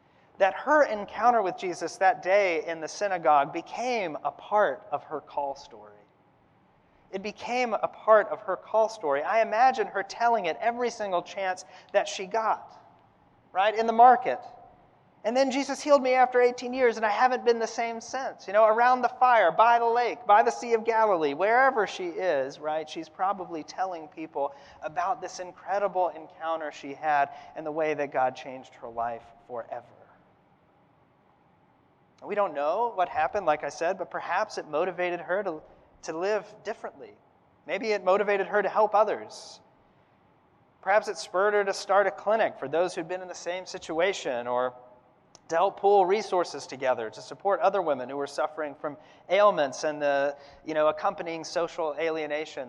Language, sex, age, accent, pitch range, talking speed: English, male, 30-49, American, 155-220 Hz, 175 wpm